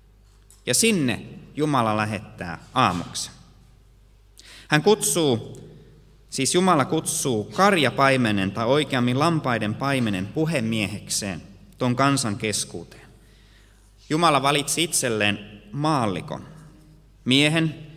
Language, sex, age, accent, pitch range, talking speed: Finnish, male, 30-49, native, 105-145 Hz, 80 wpm